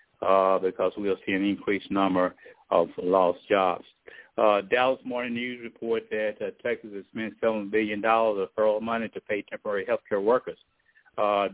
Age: 60-79